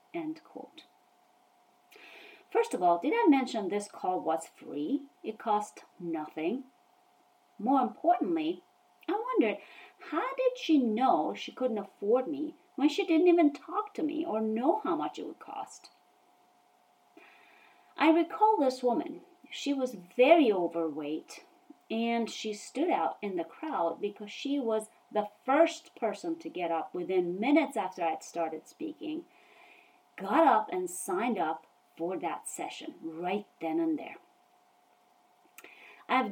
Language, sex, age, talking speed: English, female, 30-49, 135 wpm